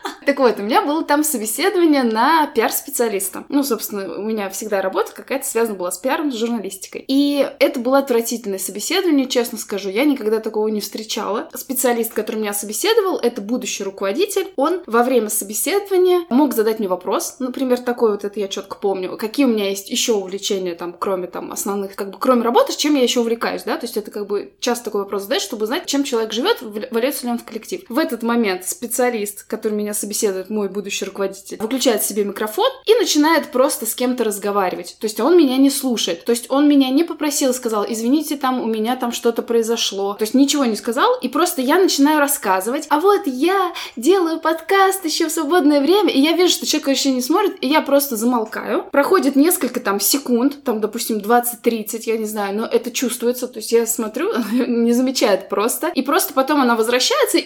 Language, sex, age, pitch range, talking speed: Russian, female, 20-39, 215-285 Hz, 200 wpm